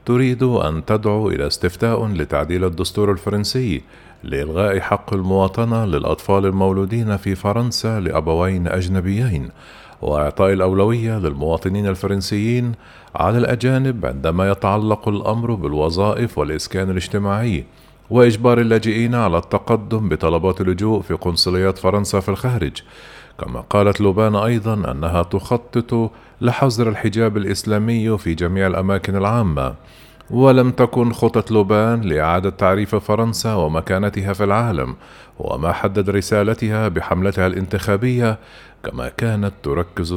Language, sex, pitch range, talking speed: Arabic, male, 95-115 Hz, 105 wpm